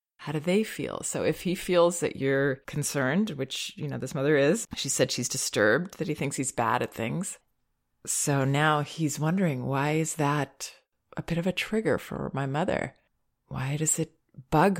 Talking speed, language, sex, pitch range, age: 190 wpm, English, female, 135-175 Hz, 30-49